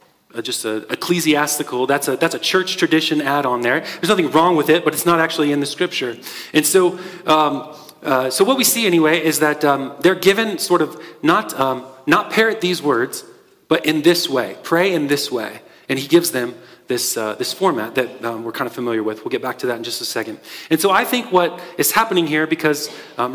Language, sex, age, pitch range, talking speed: English, male, 30-49, 140-180 Hz, 225 wpm